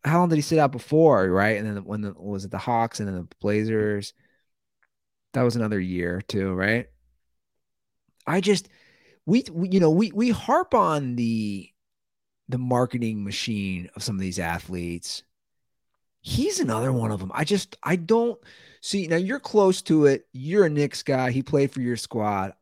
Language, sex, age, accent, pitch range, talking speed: English, male, 30-49, American, 110-170 Hz, 185 wpm